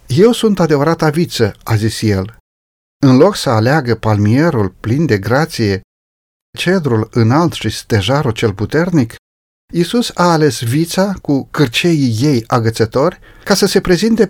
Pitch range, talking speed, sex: 115-170 Hz, 140 wpm, male